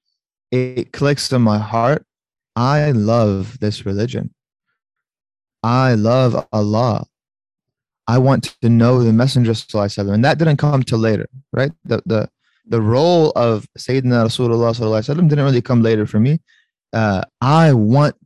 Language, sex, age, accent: English, male, 20-39, American